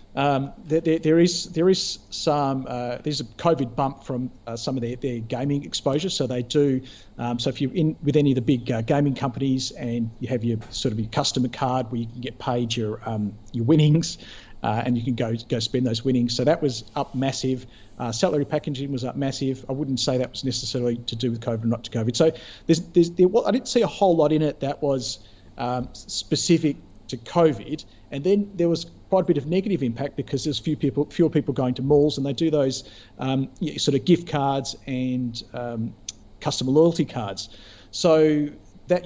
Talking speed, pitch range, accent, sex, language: 215 wpm, 120-155 Hz, Australian, male, English